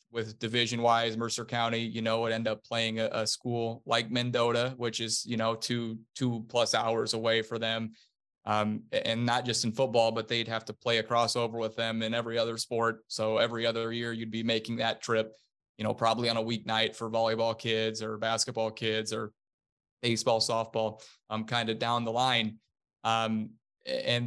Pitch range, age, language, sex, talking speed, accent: 110-120 Hz, 20-39, English, male, 195 wpm, American